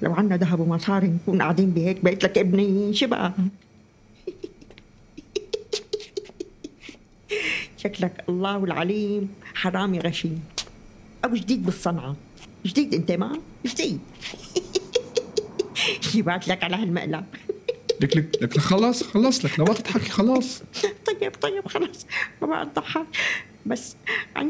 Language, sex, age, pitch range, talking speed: Arabic, female, 50-69, 180-250 Hz, 105 wpm